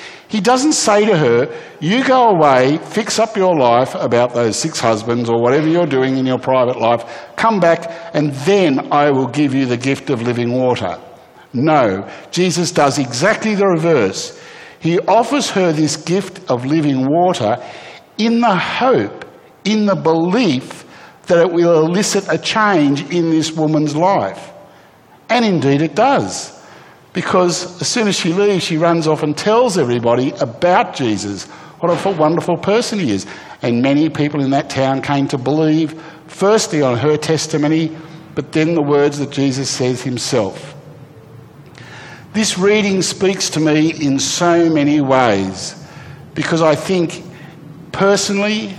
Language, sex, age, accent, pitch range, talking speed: English, male, 60-79, Australian, 140-185 Hz, 155 wpm